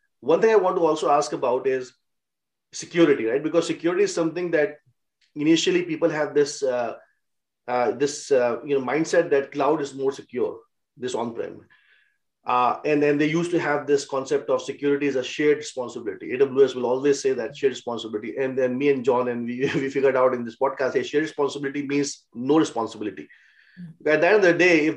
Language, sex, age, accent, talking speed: English, male, 30-49, Indian, 200 wpm